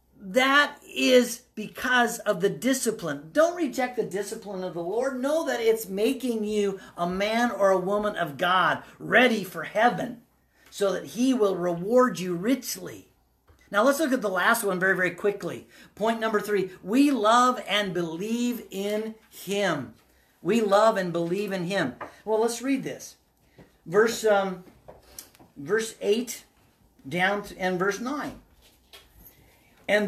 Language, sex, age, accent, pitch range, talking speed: English, male, 50-69, American, 185-245 Hz, 145 wpm